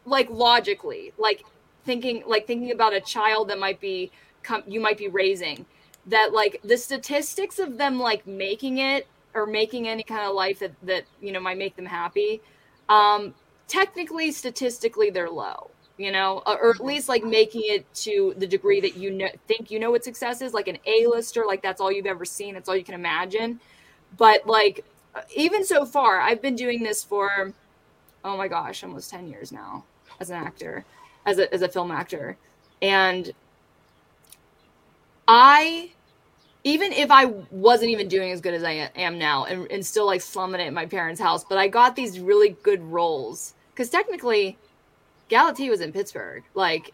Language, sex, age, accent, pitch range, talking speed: English, female, 20-39, American, 190-260 Hz, 185 wpm